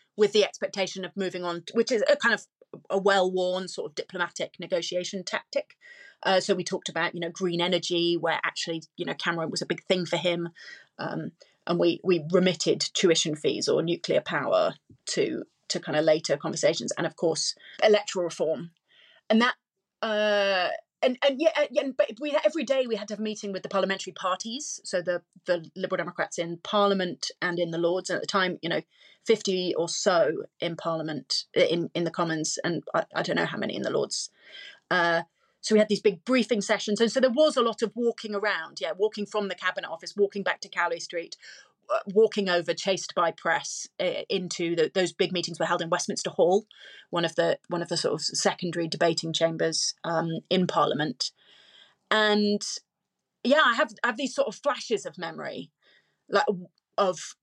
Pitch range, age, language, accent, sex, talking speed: 175-225 Hz, 30-49, English, British, female, 195 wpm